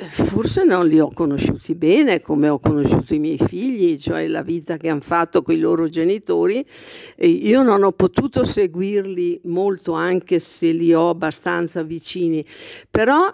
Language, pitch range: Italian, 175-245 Hz